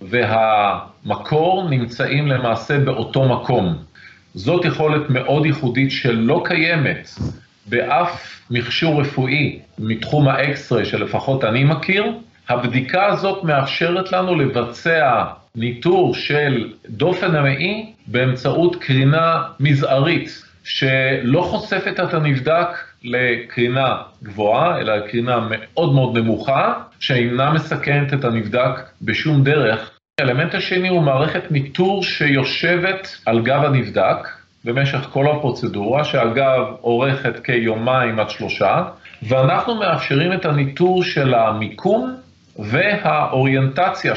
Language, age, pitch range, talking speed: Hebrew, 40-59, 125-170 Hz, 100 wpm